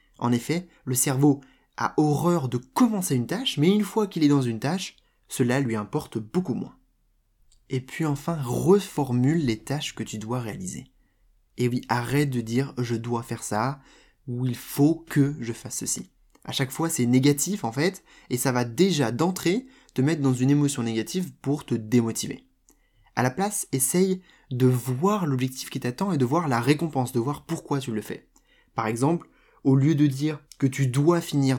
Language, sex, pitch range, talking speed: French, male, 125-165 Hz, 190 wpm